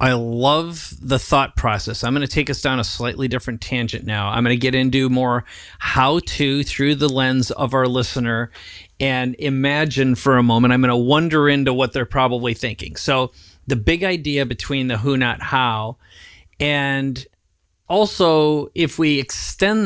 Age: 40-59